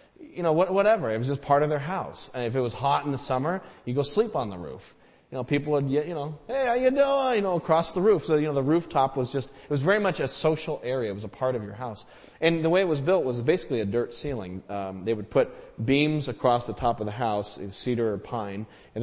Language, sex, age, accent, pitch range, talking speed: English, male, 30-49, American, 115-150 Hz, 270 wpm